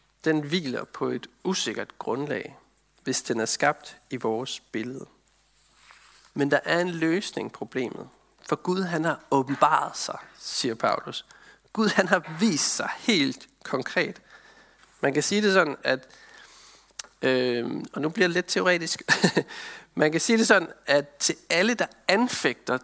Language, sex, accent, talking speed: Danish, male, native, 150 wpm